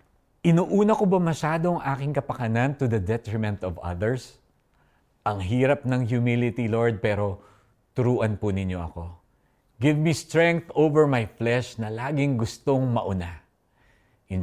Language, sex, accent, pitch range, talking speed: Filipino, male, native, 105-165 Hz, 135 wpm